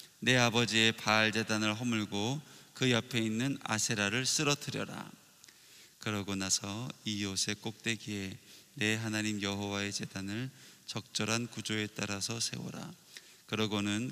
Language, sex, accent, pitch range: Korean, male, native, 105-125 Hz